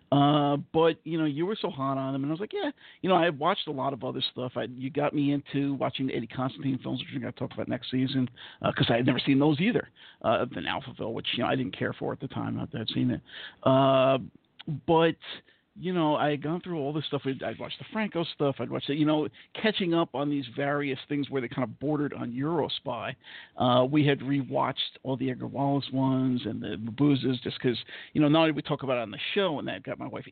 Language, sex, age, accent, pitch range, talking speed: English, male, 50-69, American, 130-160 Hz, 265 wpm